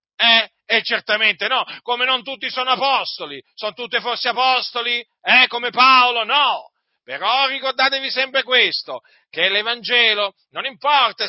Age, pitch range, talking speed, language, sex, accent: 40-59, 210-260 Hz, 140 wpm, Italian, male, native